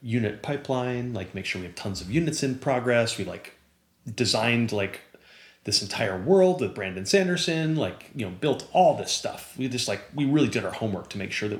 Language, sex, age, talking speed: English, male, 30-49, 210 wpm